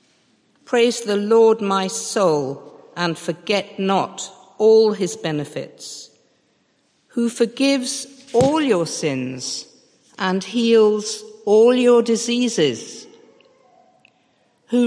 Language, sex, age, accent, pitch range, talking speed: English, female, 50-69, British, 170-230 Hz, 90 wpm